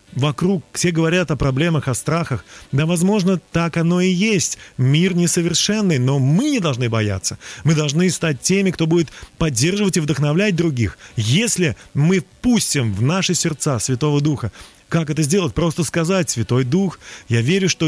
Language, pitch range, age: Russian, 130-180 Hz, 30-49